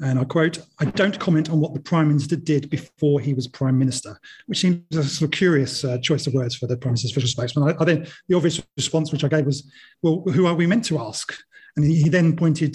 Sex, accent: male, British